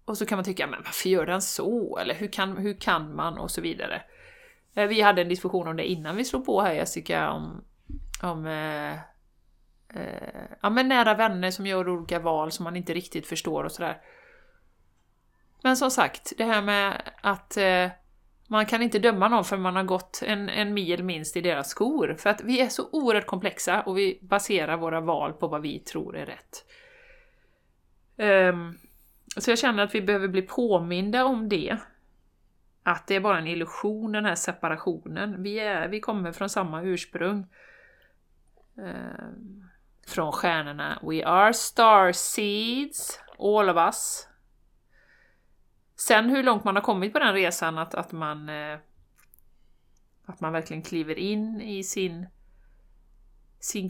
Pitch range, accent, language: 175-215 Hz, native, Swedish